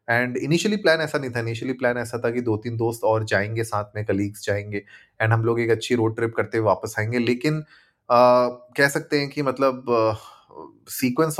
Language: Hindi